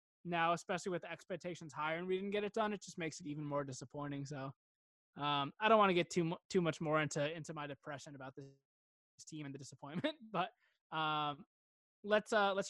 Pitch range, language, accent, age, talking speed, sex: 150-185 Hz, English, American, 20-39, 210 wpm, male